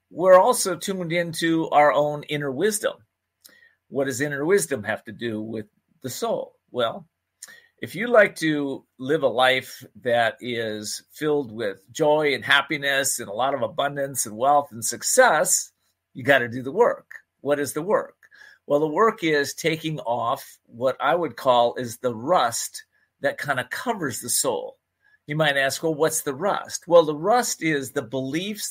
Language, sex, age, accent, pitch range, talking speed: English, male, 50-69, American, 130-170 Hz, 175 wpm